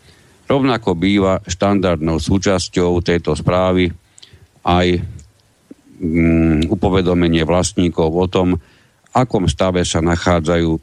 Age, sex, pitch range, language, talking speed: 60-79, male, 80-90 Hz, Slovak, 90 wpm